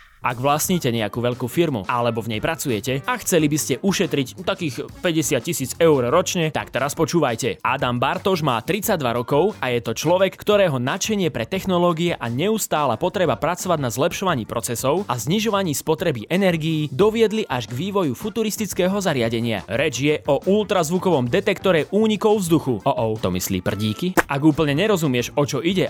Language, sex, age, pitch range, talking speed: Slovak, male, 20-39, 125-185 Hz, 160 wpm